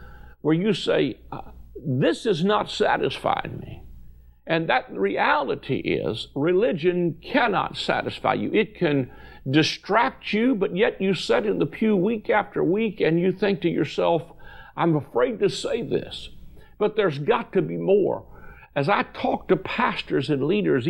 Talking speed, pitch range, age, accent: 150 wpm, 115-195 Hz, 60-79, American